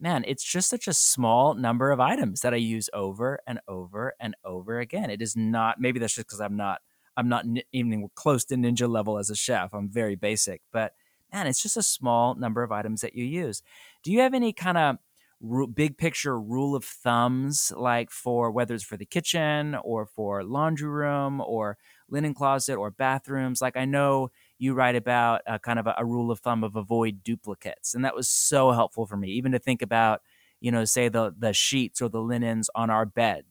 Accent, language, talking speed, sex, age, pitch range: American, English, 210 wpm, male, 30-49, 115-145 Hz